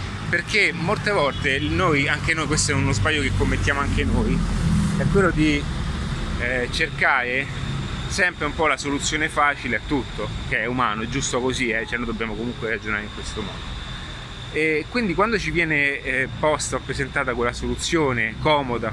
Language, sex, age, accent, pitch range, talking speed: Italian, male, 30-49, native, 115-150 Hz, 170 wpm